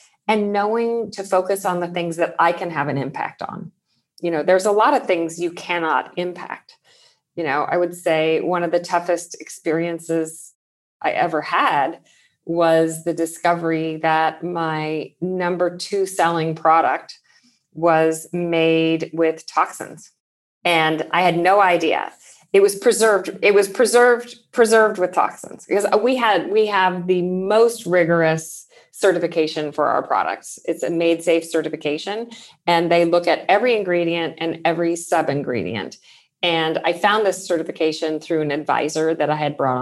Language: English